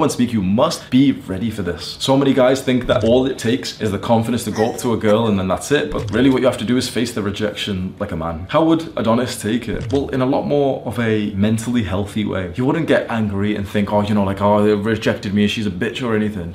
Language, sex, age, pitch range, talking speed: English, male, 20-39, 100-125 Hz, 280 wpm